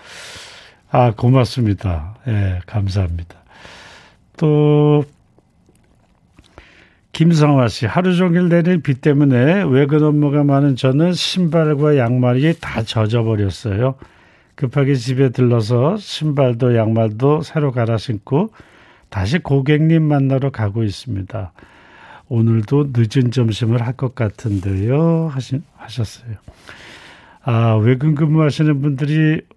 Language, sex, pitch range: Korean, male, 105-150 Hz